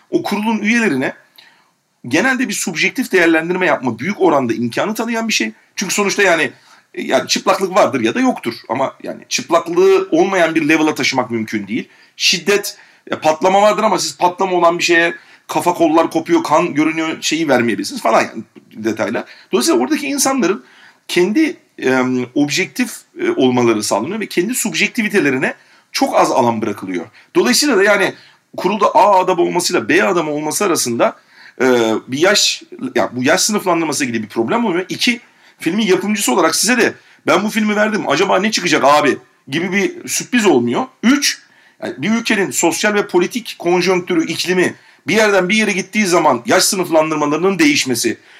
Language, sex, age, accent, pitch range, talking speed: Turkish, male, 40-59, native, 165-225 Hz, 155 wpm